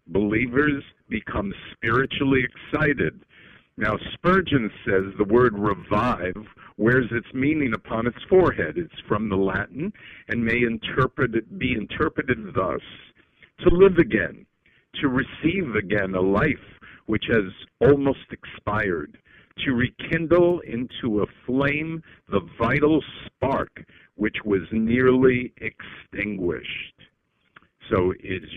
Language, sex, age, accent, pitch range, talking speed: English, male, 50-69, American, 100-135 Hz, 105 wpm